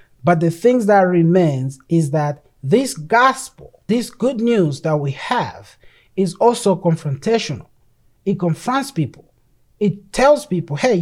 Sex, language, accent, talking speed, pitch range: male, English, Nigerian, 135 wpm, 155-220 Hz